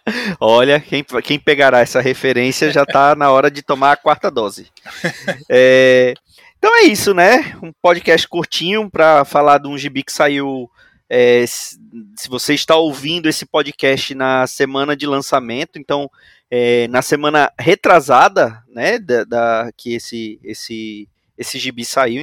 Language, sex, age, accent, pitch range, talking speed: Portuguese, male, 20-39, Brazilian, 125-155 Hz, 150 wpm